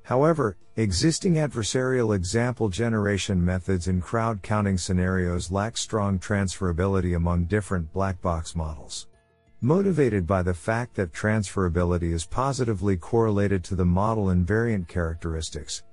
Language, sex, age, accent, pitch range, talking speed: English, male, 50-69, American, 90-115 Hz, 110 wpm